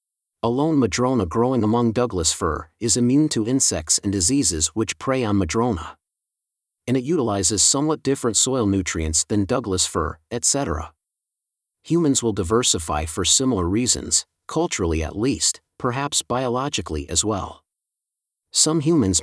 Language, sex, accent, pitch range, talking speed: English, male, American, 100-130 Hz, 130 wpm